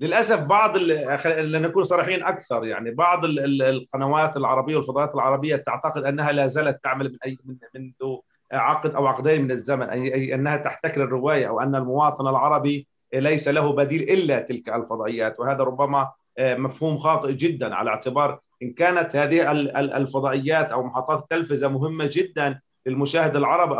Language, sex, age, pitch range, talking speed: Arabic, male, 30-49, 135-175 Hz, 140 wpm